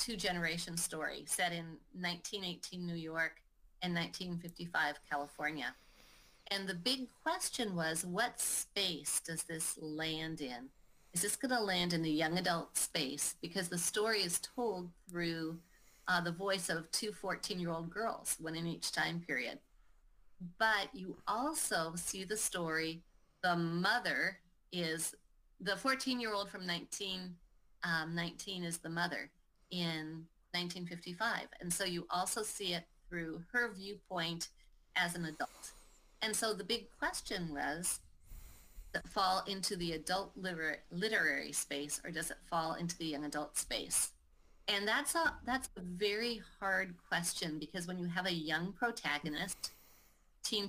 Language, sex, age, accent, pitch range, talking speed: English, female, 30-49, American, 165-200 Hz, 150 wpm